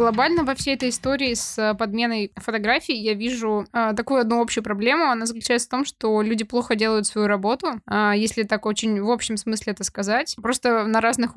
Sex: female